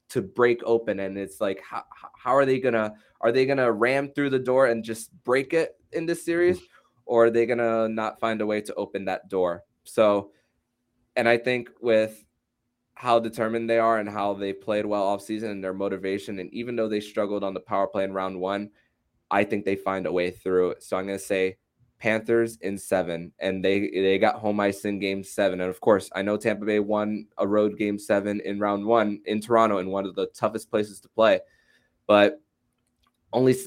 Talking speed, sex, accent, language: 210 wpm, male, American, English